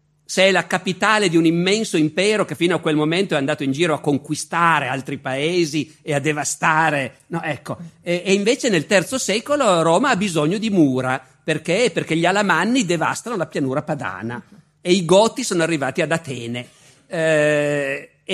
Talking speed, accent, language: 165 wpm, native, Italian